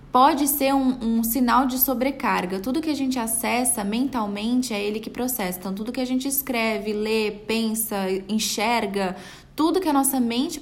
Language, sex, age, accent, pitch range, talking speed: Portuguese, female, 10-29, Brazilian, 210-275 Hz, 175 wpm